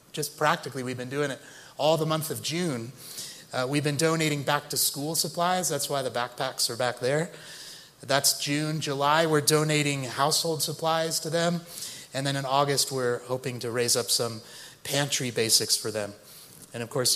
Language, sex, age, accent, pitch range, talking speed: English, male, 30-49, American, 125-160 Hz, 175 wpm